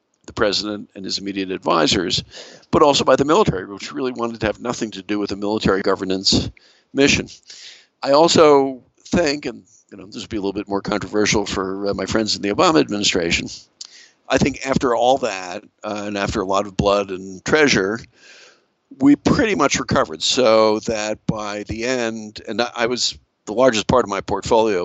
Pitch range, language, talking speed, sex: 100-115 Hz, English, 190 wpm, male